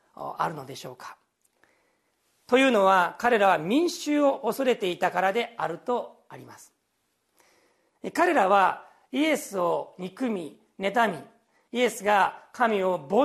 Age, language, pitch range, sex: 40-59, Japanese, 190-270 Hz, male